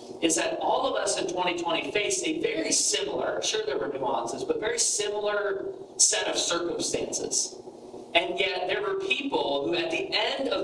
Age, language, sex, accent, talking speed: 40-59, English, male, American, 175 wpm